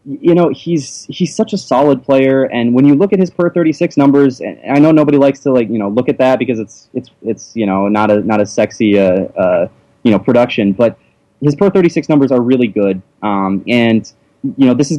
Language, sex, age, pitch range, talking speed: English, male, 20-39, 110-140 Hz, 230 wpm